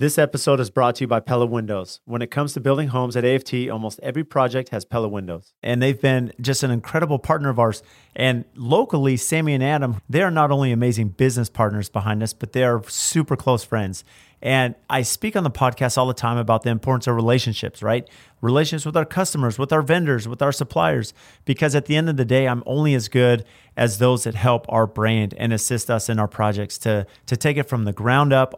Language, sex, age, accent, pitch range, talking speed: English, male, 40-59, American, 115-140 Hz, 225 wpm